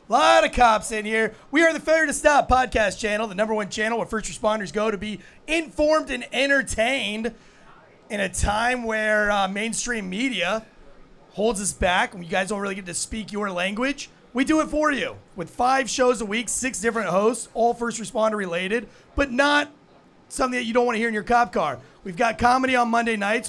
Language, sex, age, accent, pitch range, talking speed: English, male, 30-49, American, 215-275 Hz, 210 wpm